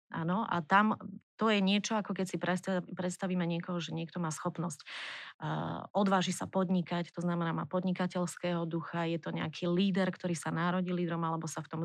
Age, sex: 30-49, female